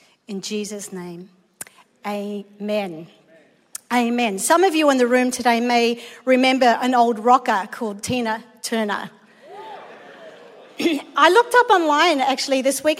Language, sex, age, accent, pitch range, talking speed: English, female, 40-59, Australian, 235-310 Hz, 125 wpm